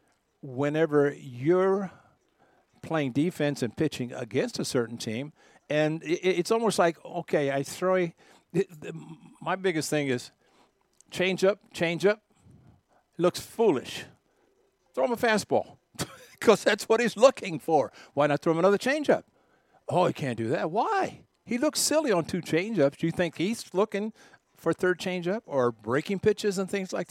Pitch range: 145-185 Hz